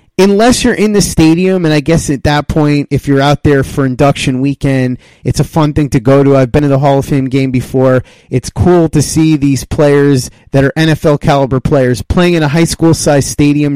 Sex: male